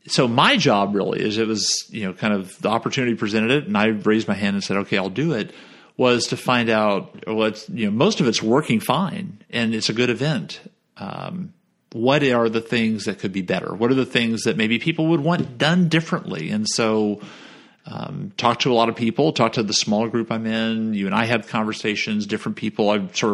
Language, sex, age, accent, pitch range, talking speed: English, male, 40-59, American, 110-160 Hz, 225 wpm